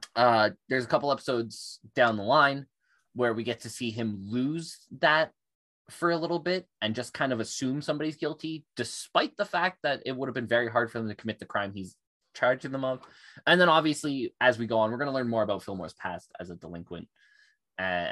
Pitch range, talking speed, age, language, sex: 100-145 Hz, 220 wpm, 20-39, English, male